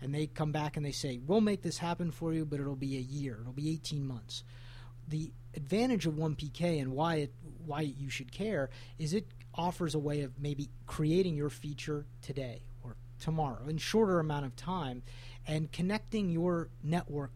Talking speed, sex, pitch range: 190 wpm, male, 125-160 Hz